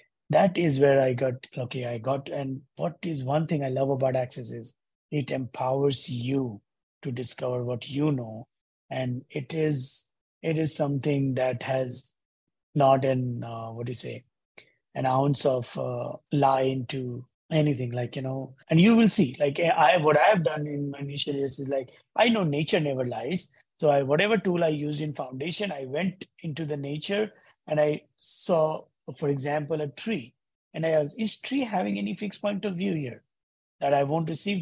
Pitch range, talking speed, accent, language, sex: 135-195 Hz, 190 wpm, Indian, English, male